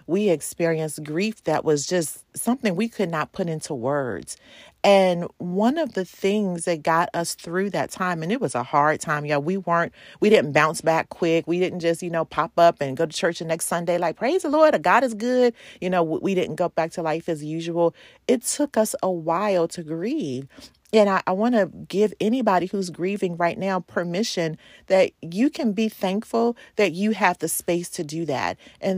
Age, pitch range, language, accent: 40-59, 160-200 Hz, English, American